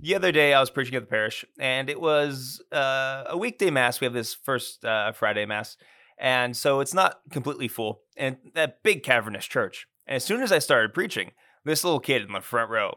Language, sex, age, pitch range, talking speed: English, male, 20-39, 120-155 Hz, 220 wpm